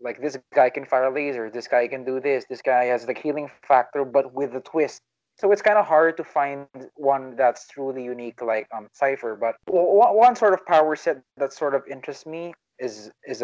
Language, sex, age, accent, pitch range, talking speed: English, male, 20-39, Filipino, 125-155 Hz, 230 wpm